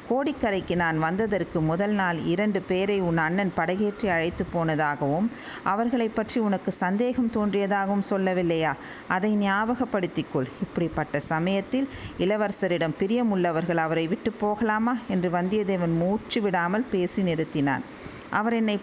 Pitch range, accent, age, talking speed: 175-210 Hz, native, 50-69, 110 wpm